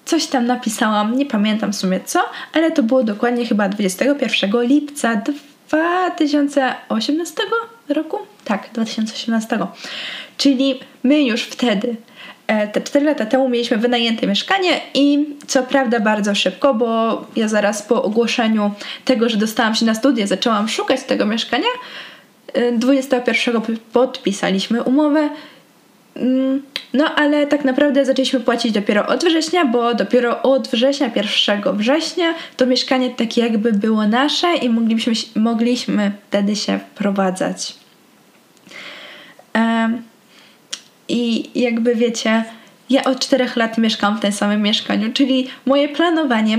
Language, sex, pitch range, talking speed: Polish, female, 220-275 Hz, 120 wpm